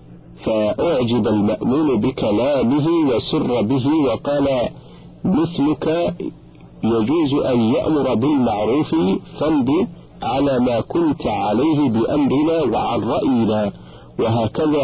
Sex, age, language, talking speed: male, 50-69, Arabic, 80 wpm